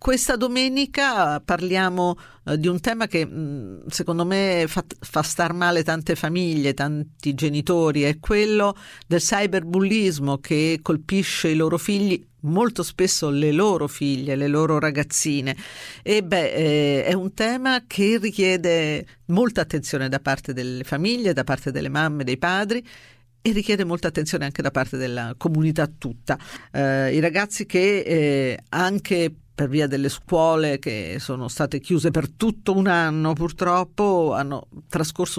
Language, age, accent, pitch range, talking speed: Italian, 50-69, native, 150-195 Hz, 150 wpm